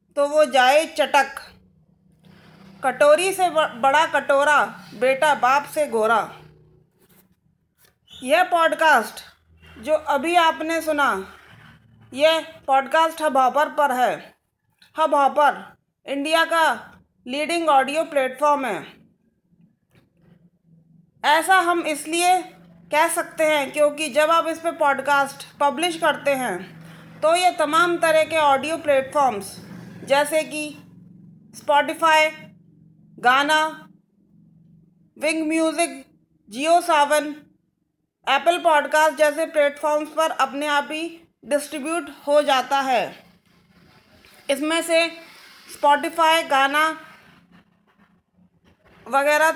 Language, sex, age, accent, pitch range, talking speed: Hindi, female, 30-49, native, 260-320 Hz, 95 wpm